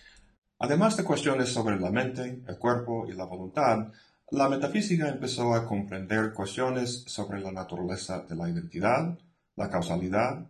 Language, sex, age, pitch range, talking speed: Spanish, male, 50-69, 100-135 Hz, 145 wpm